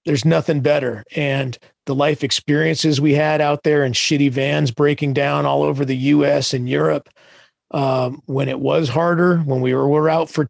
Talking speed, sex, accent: 190 wpm, male, American